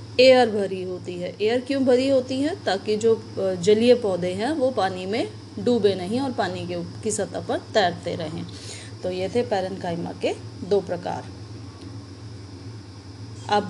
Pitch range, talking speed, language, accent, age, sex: 175-250 Hz, 150 wpm, Hindi, native, 30-49, female